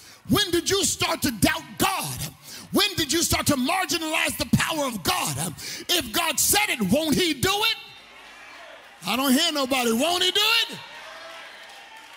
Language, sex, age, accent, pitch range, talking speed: English, male, 50-69, American, 245-370 Hz, 165 wpm